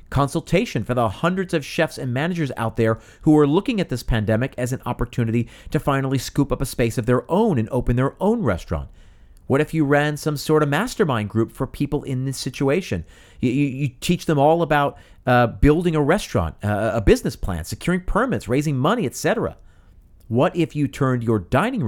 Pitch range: 105-150 Hz